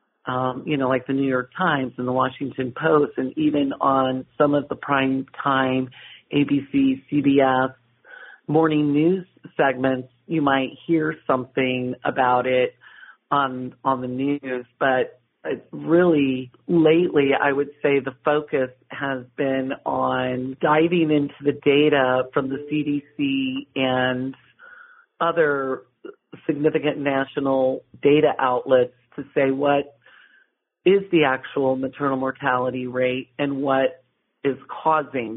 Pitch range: 130-150 Hz